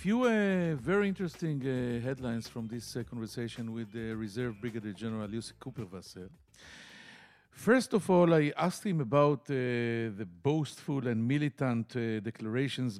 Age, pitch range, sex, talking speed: 50-69, 120-170 Hz, male, 150 wpm